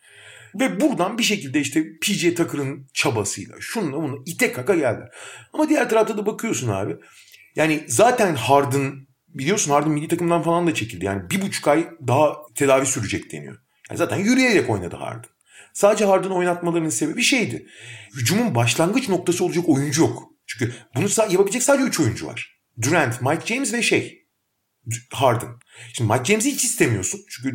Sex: male